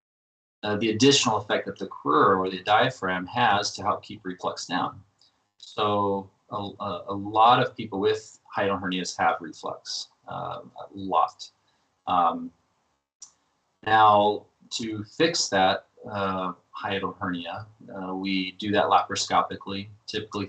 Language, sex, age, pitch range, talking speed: English, male, 30-49, 95-105 Hz, 130 wpm